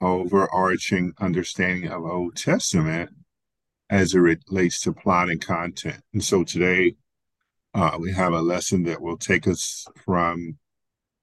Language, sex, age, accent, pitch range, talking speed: English, male, 50-69, American, 90-100 Hz, 135 wpm